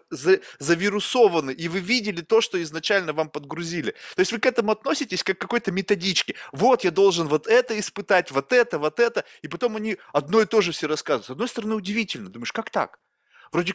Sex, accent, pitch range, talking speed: male, native, 170-240 Hz, 200 wpm